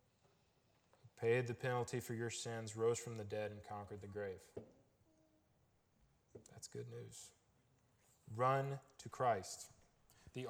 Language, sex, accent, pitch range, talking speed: English, male, American, 110-135 Hz, 120 wpm